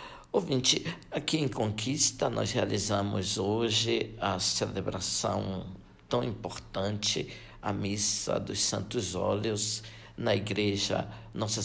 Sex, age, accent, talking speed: male, 60-79, Brazilian, 100 wpm